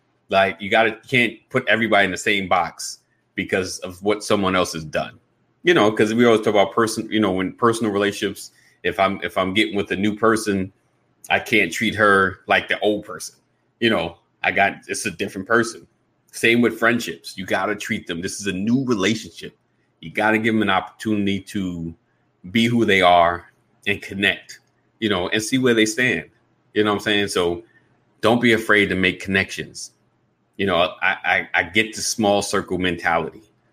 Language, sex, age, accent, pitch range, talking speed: English, male, 30-49, American, 95-110 Hz, 200 wpm